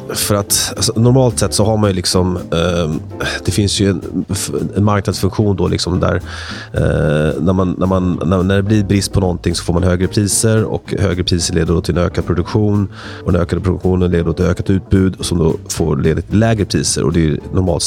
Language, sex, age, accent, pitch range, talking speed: Swedish, male, 30-49, native, 85-100 Hz, 220 wpm